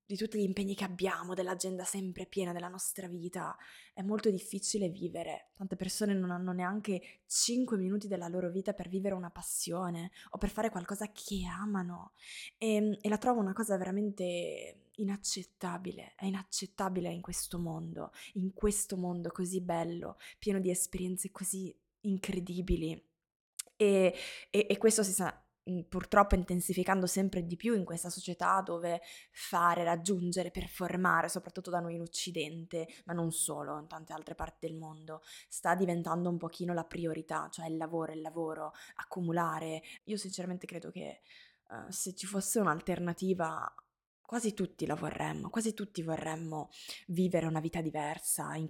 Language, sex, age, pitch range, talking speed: Italian, female, 20-39, 165-195 Hz, 150 wpm